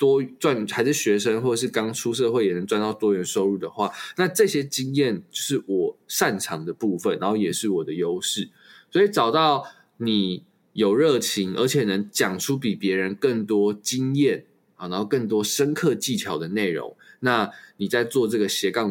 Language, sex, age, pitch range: Chinese, male, 20-39, 105-155 Hz